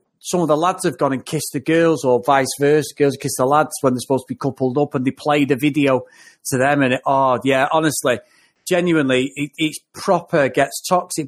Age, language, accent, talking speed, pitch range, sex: 30-49, English, British, 225 wpm, 145-210 Hz, male